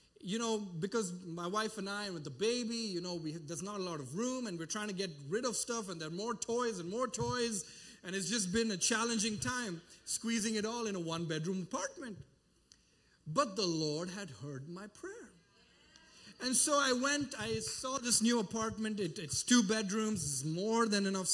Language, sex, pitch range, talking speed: English, male, 175-230 Hz, 200 wpm